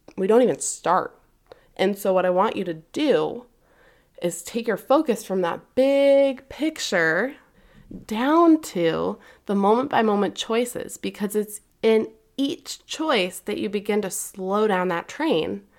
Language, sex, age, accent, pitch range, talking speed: English, female, 20-39, American, 180-230 Hz, 150 wpm